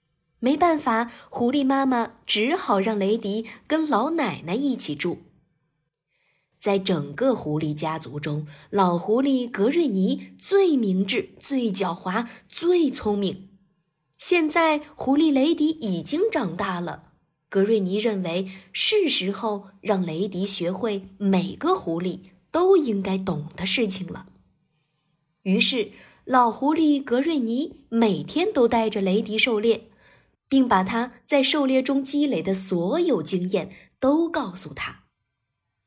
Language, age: Chinese, 20-39